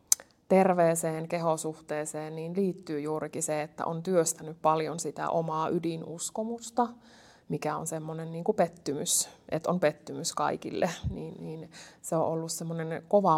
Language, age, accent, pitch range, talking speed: Finnish, 20-39, native, 160-180 Hz, 135 wpm